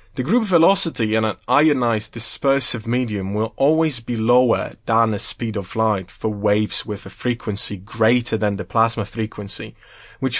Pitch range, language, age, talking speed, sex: 105-125 Hz, English, 30-49, 160 wpm, male